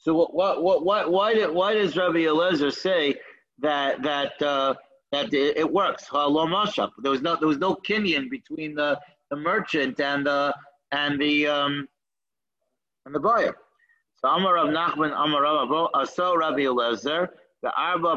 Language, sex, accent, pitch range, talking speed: English, male, American, 140-165 Hz, 140 wpm